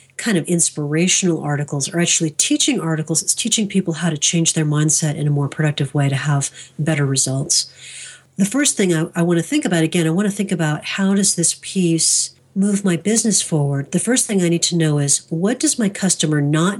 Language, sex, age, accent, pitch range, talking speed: English, female, 40-59, American, 155-185 Hz, 220 wpm